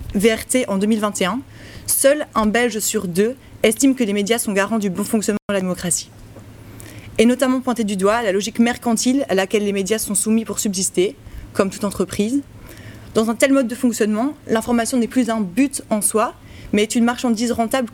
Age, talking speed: 20-39, 190 wpm